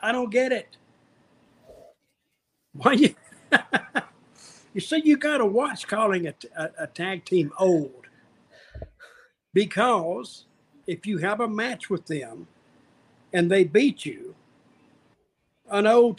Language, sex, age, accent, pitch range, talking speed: English, male, 60-79, American, 175-225 Hz, 120 wpm